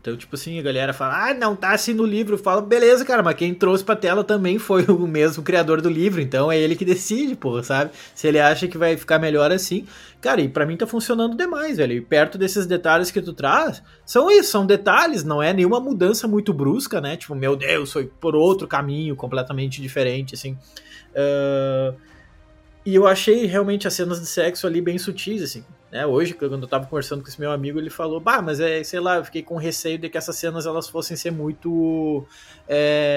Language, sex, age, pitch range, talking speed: Portuguese, male, 20-39, 145-205 Hz, 220 wpm